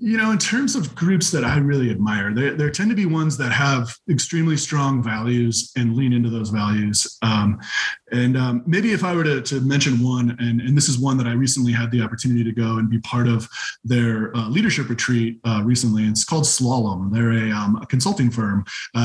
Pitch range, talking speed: 115-155 Hz, 220 wpm